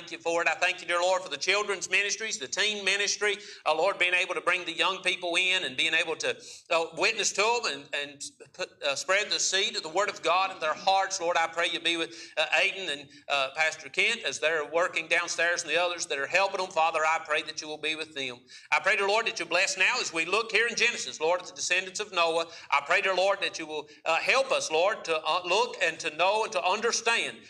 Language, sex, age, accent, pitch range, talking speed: English, male, 50-69, American, 155-195 Hz, 260 wpm